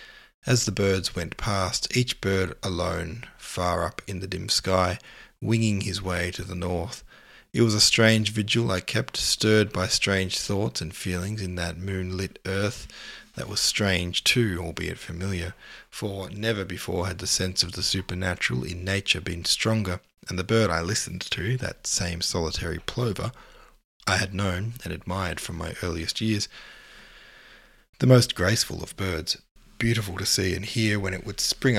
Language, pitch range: English, 90-105 Hz